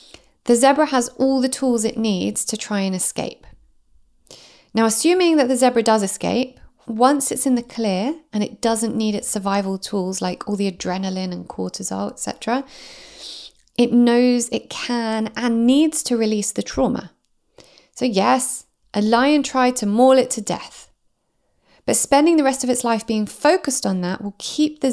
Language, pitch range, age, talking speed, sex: English, 205-255 Hz, 30-49, 175 wpm, female